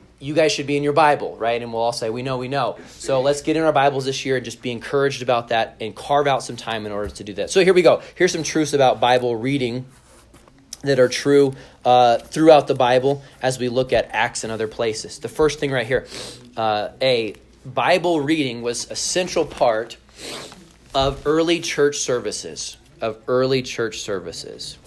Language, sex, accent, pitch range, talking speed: English, male, American, 120-150 Hz, 205 wpm